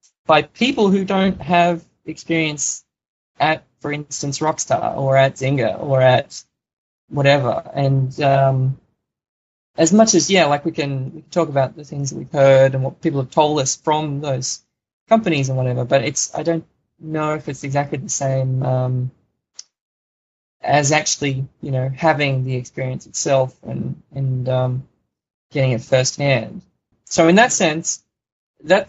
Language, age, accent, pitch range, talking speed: English, 20-39, Australian, 130-160 Hz, 155 wpm